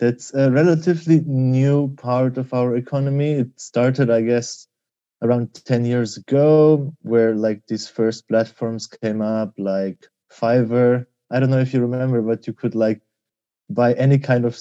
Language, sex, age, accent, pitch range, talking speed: English, male, 20-39, German, 110-140 Hz, 160 wpm